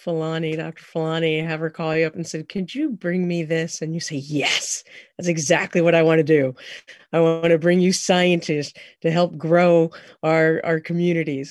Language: English